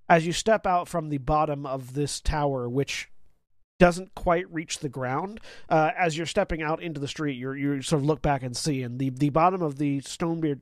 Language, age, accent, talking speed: English, 30-49, American, 220 wpm